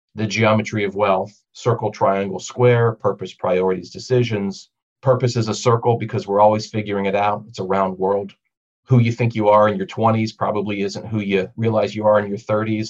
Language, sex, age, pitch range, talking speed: English, male, 40-59, 100-120 Hz, 195 wpm